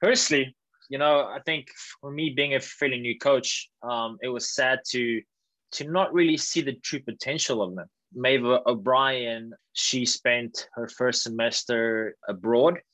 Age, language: 20-39, English